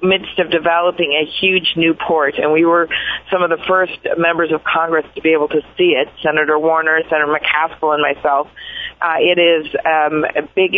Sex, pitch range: female, 160-180 Hz